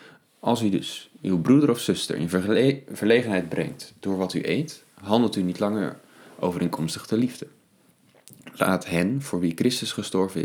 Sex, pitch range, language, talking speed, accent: male, 85-110 Hz, Dutch, 155 wpm, Dutch